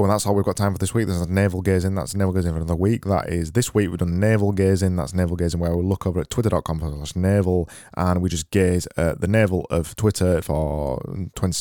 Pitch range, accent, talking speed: 90-100 Hz, British, 250 wpm